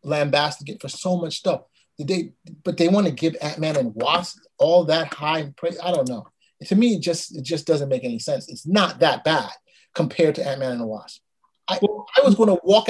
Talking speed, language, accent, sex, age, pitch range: 225 wpm, English, American, male, 30-49, 150-200 Hz